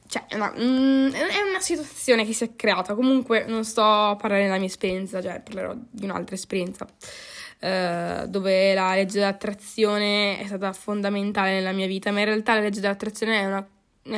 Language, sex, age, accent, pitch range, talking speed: Italian, female, 10-29, native, 195-225 Hz, 180 wpm